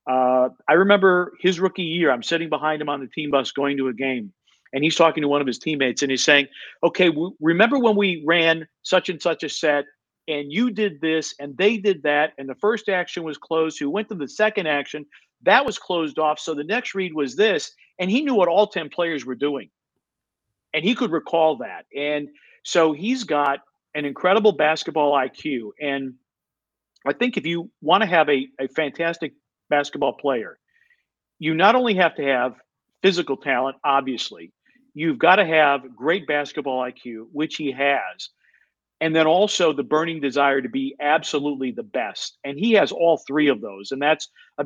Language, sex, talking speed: English, male, 190 wpm